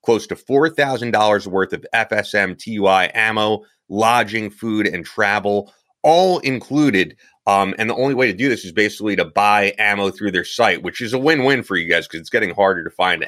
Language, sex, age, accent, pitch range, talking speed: English, male, 30-49, American, 95-115 Hz, 195 wpm